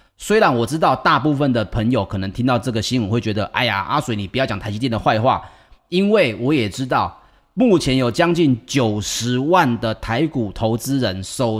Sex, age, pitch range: male, 30-49, 110-145 Hz